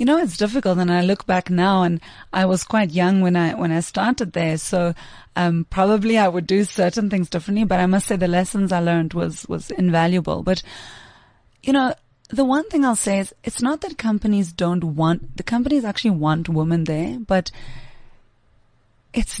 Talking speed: 195 wpm